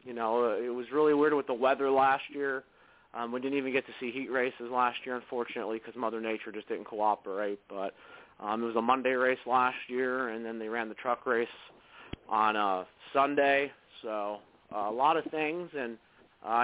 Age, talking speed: 30-49, 200 wpm